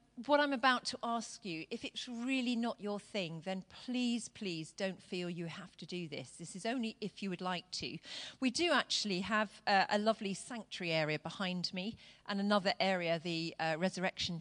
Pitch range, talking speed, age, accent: 180-245 Hz, 195 wpm, 40-59, British